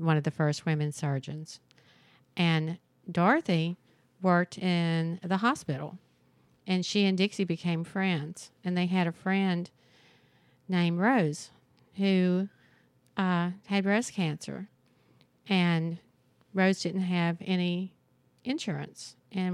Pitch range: 165-195 Hz